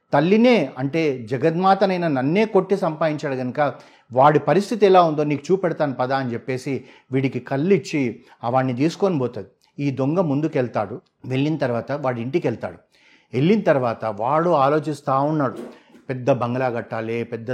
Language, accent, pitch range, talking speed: Telugu, native, 130-160 Hz, 135 wpm